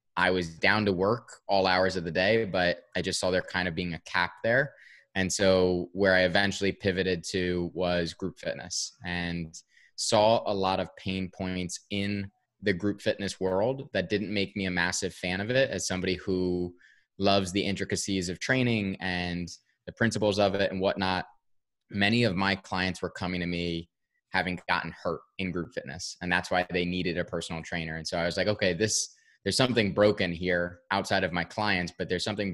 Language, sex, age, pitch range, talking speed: English, male, 20-39, 90-100 Hz, 195 wpm